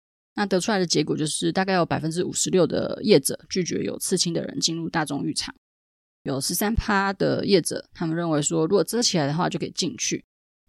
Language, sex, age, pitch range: Chinese, female, 20-39, 155-195 Hz